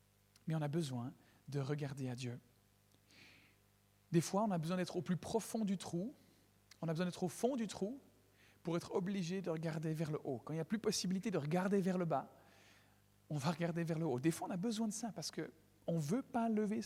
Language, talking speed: French, 230 wpm